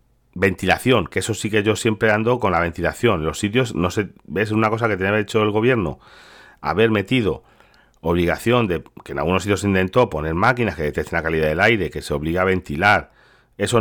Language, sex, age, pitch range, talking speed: Spanish, male, 40-59, 90-120 Hz, 205 wpm